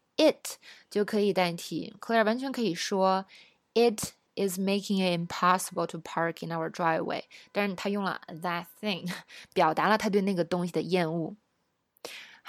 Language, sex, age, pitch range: Chinese, female, 20-39, 180-230 Hz